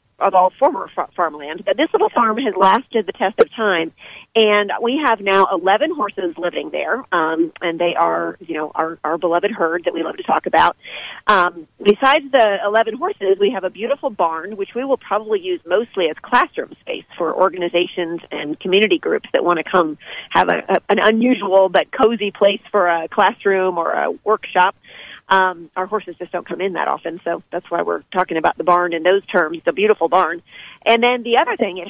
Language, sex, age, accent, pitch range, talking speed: English, female, 40-59, American, 175-230 Hz, 205 wpm